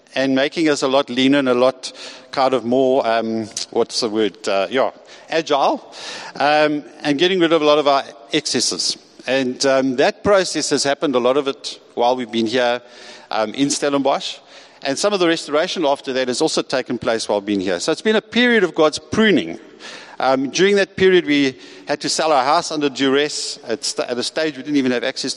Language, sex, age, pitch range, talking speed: English, male, 50-69, 125-155 Hz, 210 wpm